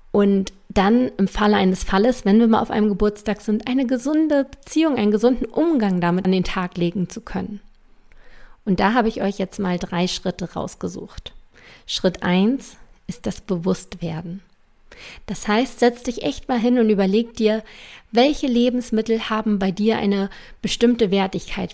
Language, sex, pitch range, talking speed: German, female, 190-230 Hz, 165 wpm